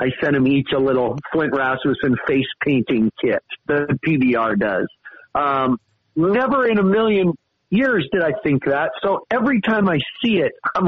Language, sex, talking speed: English, male, 170 wpm